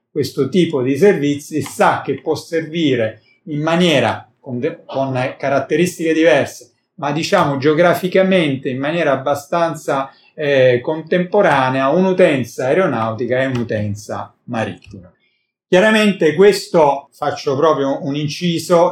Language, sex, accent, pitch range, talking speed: Italian, male, native, 125-160 Hz, 105 wpm